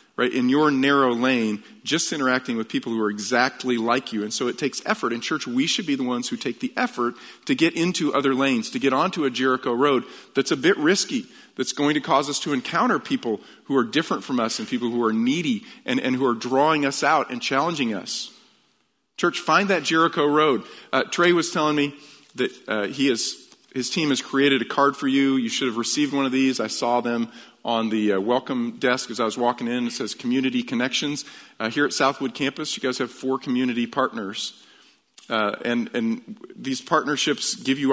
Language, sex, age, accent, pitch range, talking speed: English, male, 40-59, American, 120-150 Hz, 215 wpm